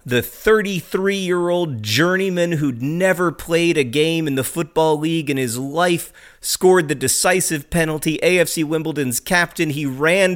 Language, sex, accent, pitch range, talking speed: English, male, American, 120-170 Hz, 140 wpm